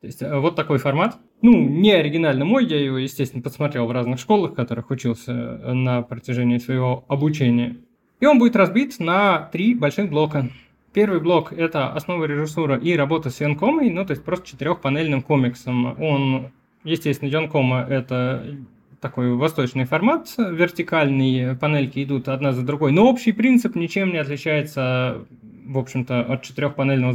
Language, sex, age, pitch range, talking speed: Russian, male, 20-39, 130-180 Hz, 150 wpm